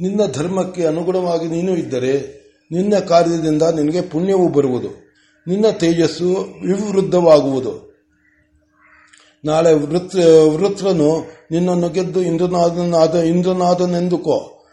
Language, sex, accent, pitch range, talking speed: Kannada, male, native, 150-180 Hz, 80 wpm